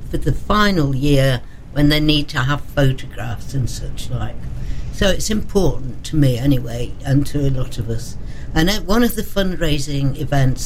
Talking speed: 175 wpm